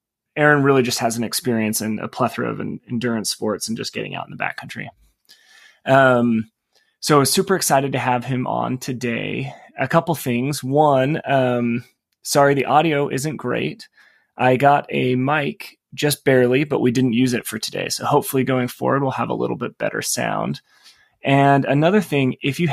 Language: English